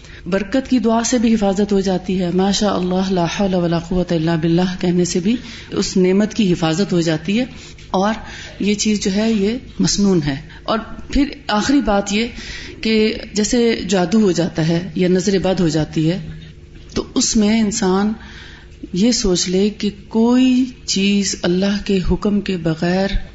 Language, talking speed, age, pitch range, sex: Urdu, 170 wpm, 30-49, 180-230 Hz, female